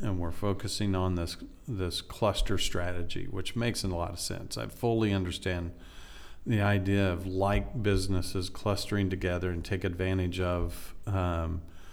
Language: English